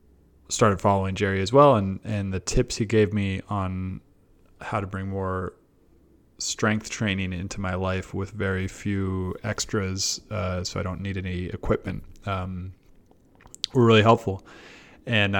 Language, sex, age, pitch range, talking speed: English, male, 30-49, 90-100 Hz, 150 wpm